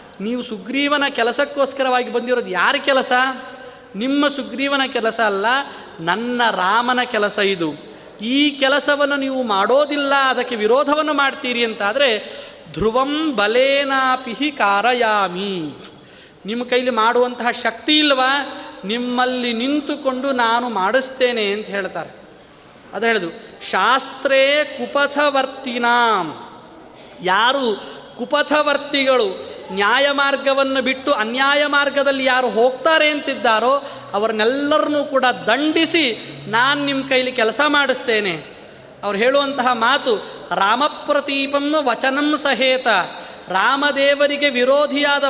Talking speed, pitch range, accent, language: 85 wpm, 235-285 Hz, native, Kannada